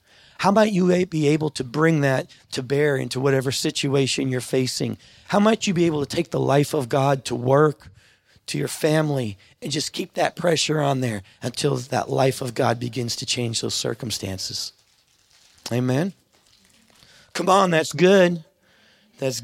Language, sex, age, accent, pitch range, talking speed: English, male, 40-59, American, 125-160 Hz, 165 wpm